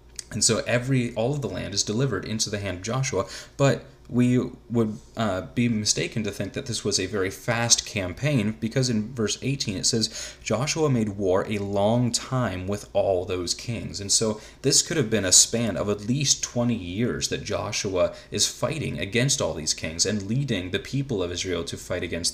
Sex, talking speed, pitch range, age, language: male, 200 wpm, 95-120 Hz, 30-49, English